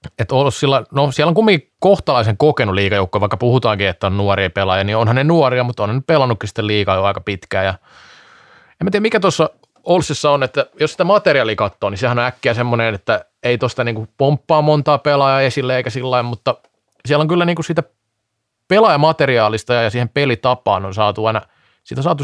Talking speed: 190 wpm